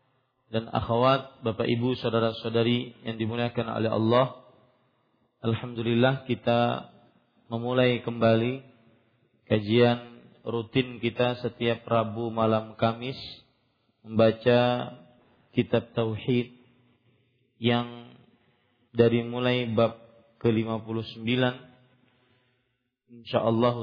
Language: Malay